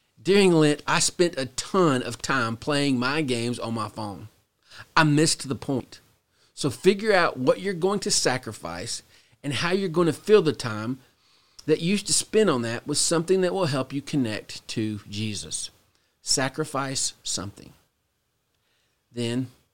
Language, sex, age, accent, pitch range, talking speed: English, male, 40-59, American, 115-150 Hz, 160 wpm